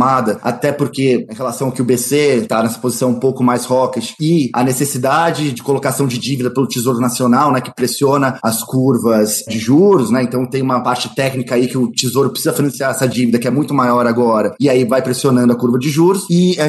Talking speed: 220 wpm